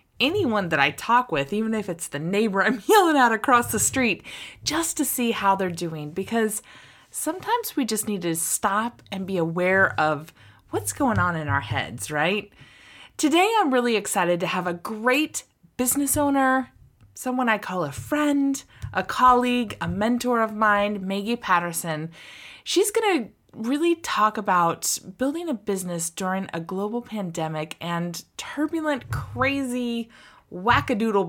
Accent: American